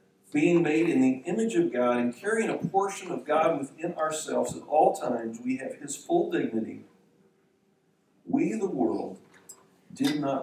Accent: American